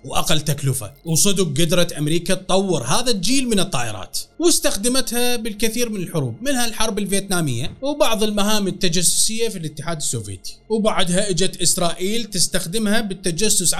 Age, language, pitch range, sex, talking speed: 30-49, Arabic, 170-240 Hz, male, 120 wpm